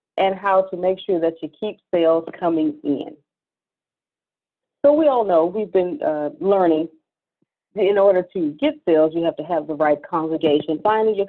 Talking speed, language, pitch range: 175 wpm, English, 165-210 Hz